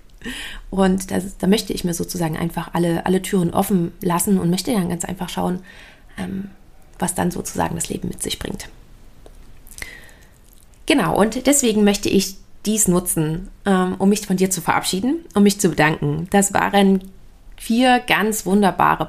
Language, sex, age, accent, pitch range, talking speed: German, female, 30-49, German, 180-210 Hz, 150 wpm